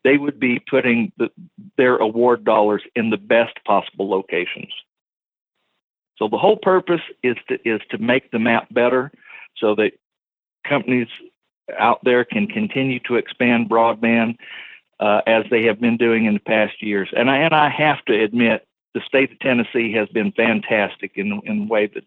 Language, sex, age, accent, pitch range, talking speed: English, male, 50-69, American, 115-135 Hz, 165 wpm